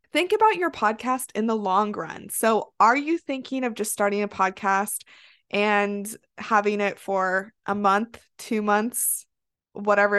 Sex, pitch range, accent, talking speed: female, 195-240 Hz, American, 155 wpm